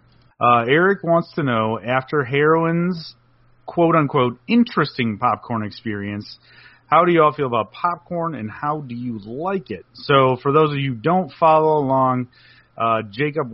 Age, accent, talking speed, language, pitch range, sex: 40-59, American, 160 wpm, English, 110-140 Hz, male